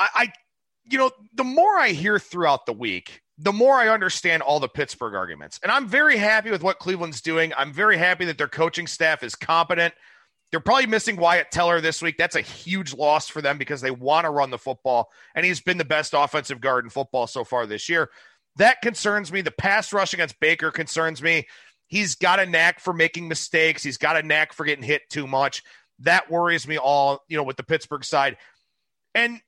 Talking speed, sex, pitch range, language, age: 215 wpm, male, 150-195 Hz, English, 40-59